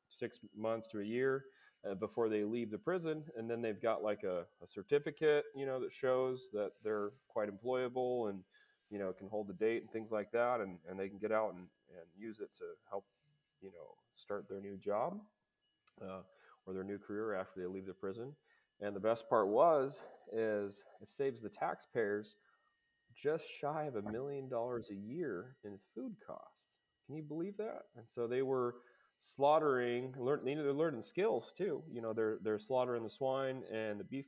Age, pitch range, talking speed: 30-49, 105-130 Hz, 195 wpm